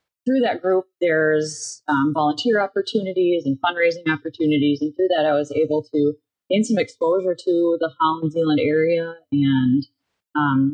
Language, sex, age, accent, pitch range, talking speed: English, female, 30-49, American, 145-165 Hz, 150 wpm